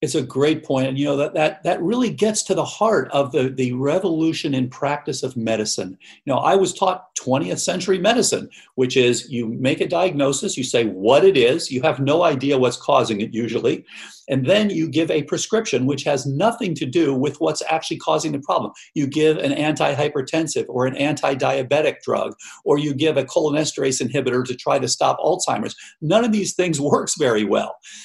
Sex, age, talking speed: male, 50-69, 200 wpm